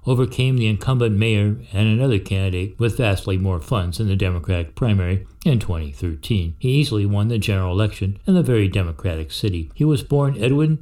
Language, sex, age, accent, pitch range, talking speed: English, male, 60-79, American, 95-115 Hz, 180 wpm